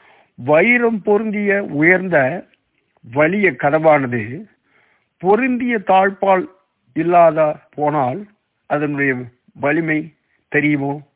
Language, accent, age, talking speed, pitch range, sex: Tamil, native, 50-69, 70 wpm, 130-175 Hz, male